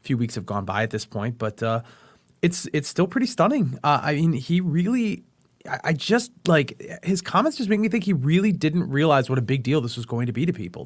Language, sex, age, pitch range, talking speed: English, male, 30-49, 120-170 Hz, 250 wpm